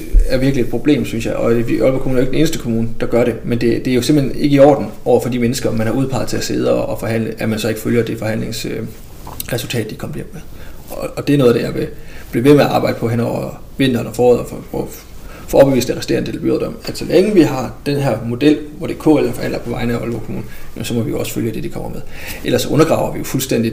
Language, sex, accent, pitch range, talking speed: Danish, male, native, 115-135 Hz, 285 wpm